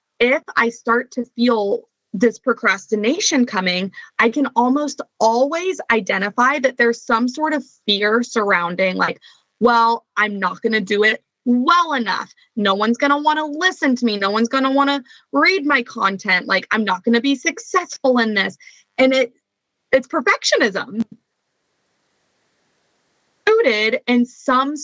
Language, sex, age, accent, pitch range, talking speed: English, female, 20-39, American, 215-270 Hz, 155 wpm